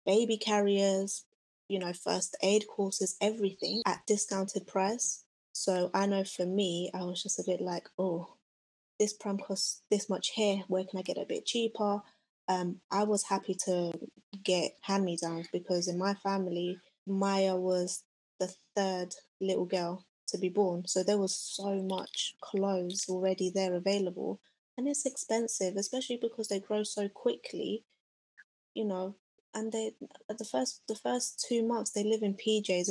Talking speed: 160 wpm